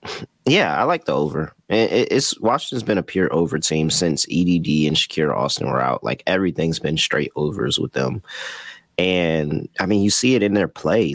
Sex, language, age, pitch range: male, English, 30-49, 80-100 Hz